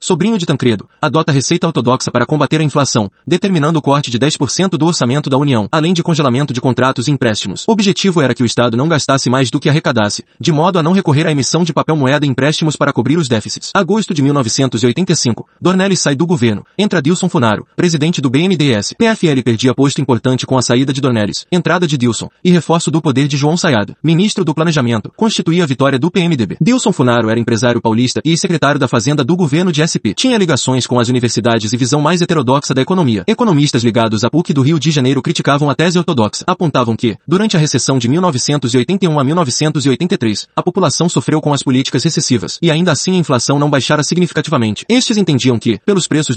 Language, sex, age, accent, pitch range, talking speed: Portuguese, male, 30-49, Brazilian, 130-170 Hz, 205 wpm